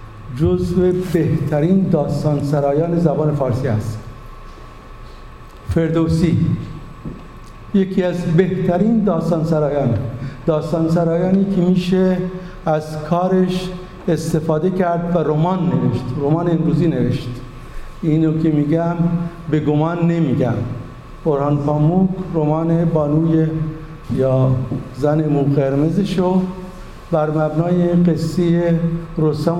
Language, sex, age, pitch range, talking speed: Persian, male, 60-79, 140-170 Hz, 85 wpm